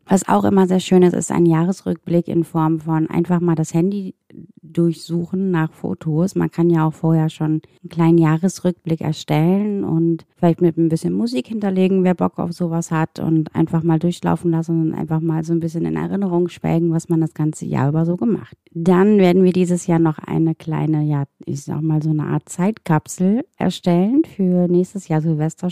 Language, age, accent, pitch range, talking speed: German, 30-49, German, 165-185 Hz, 195 wpm